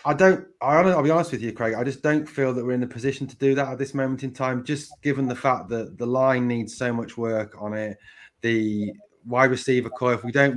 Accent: British